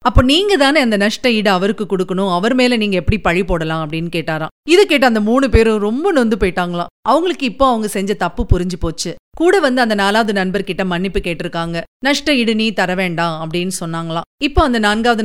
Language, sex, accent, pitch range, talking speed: Tamil, female, native, 180-265 Hz, 185 wpm